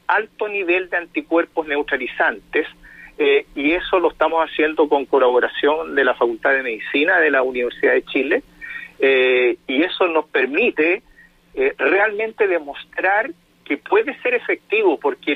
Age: 50-69